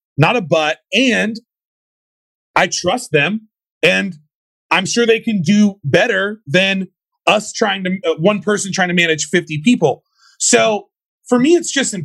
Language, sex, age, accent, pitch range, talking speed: English, male, 30-49, American, 140-195 Hz, 155 wpm